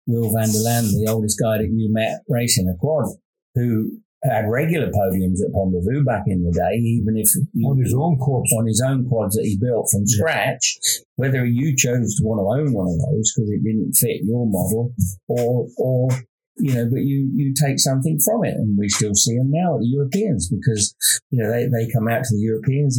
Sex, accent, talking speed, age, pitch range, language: male, British, 215 wpm, 50-69, 110-140 Hz, English